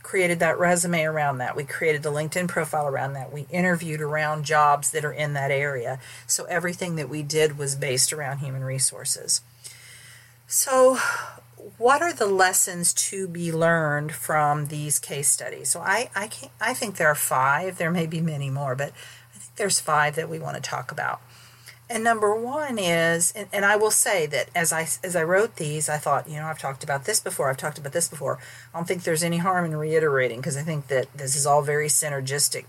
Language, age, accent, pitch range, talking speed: English, 50-69, American, 145-175 Hz, 210 wpm